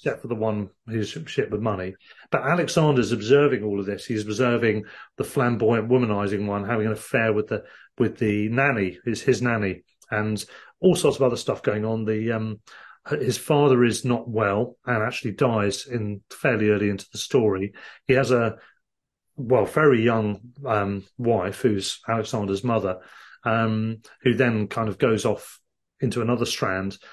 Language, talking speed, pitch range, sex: English, 170 wpm, 105-135 Hz, male